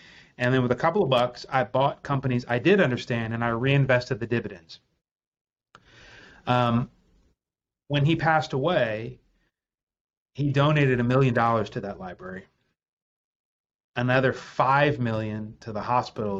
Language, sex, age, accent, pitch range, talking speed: English, male, 30-49, American, 105-125 Hz, 135 wpm